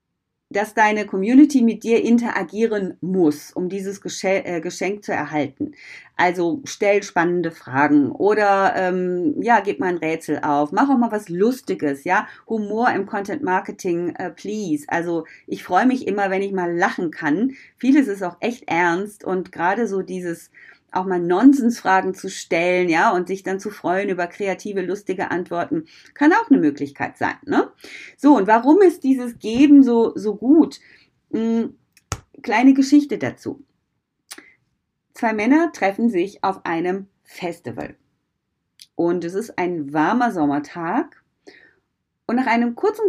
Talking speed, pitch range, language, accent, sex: 150 wpm, 175-250 Hz, German, German, female